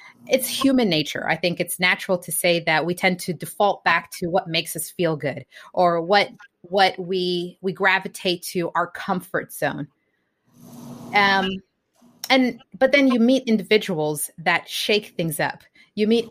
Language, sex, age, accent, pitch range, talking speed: English, female, 30-49, American, 170-205 Hz, 160 wpm